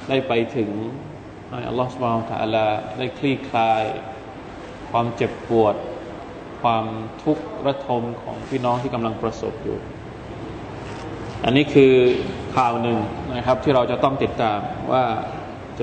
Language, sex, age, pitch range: Thai, male, 20-39, 115-145 Hz